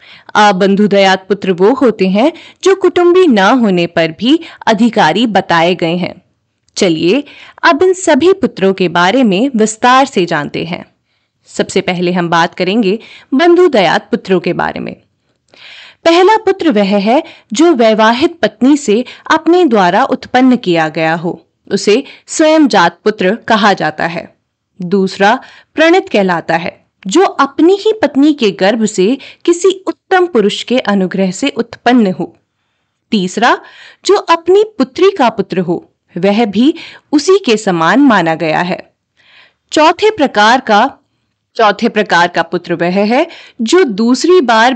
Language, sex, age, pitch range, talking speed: Hindi, female, 30-49, 190-310 Hz, 140 wpm